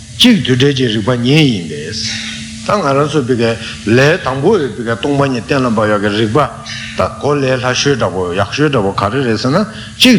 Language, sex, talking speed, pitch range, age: Italian, male, 205 wpm, 110-145 Hz, 60-79